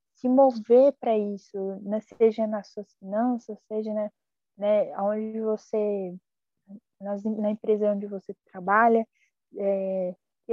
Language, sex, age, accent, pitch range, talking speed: Portuguese, female, 10-29, Brazilian, 210-245 Hz, 140 wpm